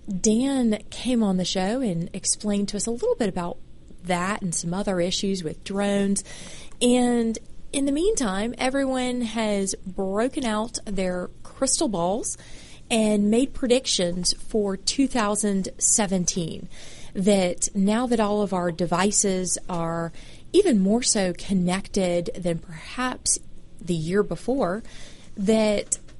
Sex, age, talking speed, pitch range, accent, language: female, 30-49, 125 wpm, 185-230 Hz, American, English